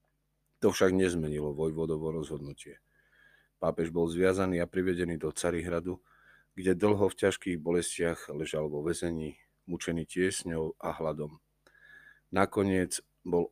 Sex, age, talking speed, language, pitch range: male, 30-49, 115 wpm, Slovak, 80-95 Hz